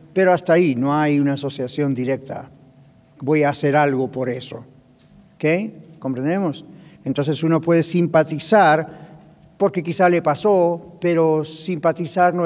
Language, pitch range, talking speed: English, 140-180 Hz, 130 wpm